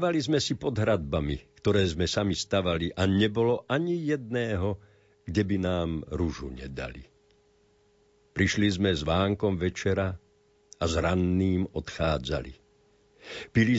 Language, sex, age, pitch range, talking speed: Slovak, male, 50-69, 85-115 Hz, 120 wpm